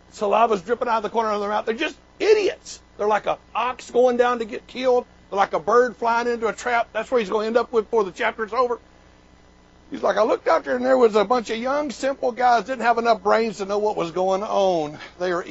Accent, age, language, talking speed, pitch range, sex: American, 60-79, English, 265 wpm, 185-250 Hz, male